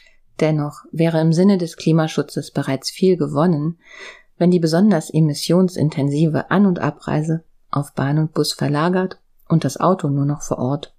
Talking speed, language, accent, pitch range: 155 wpm, German, German, 150-195 Hz